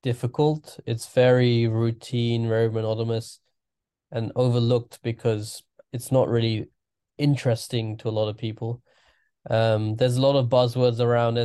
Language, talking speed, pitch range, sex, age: English, 130 wpm, 110-120 Hz, male, 20-39